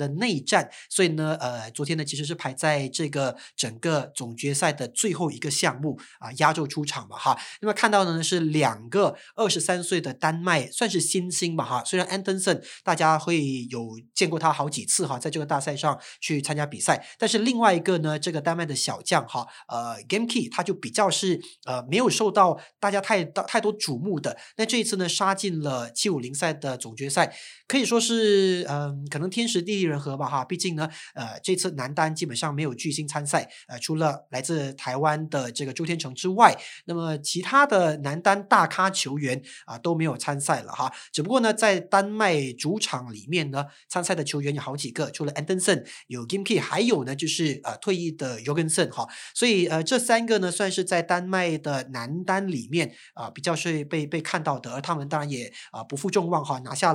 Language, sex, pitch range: Chinese, male, 145-185 Hz